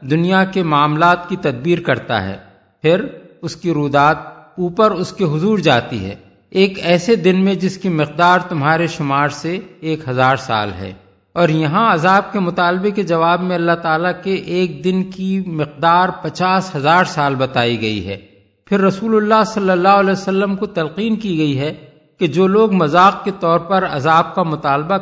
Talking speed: 175 wpm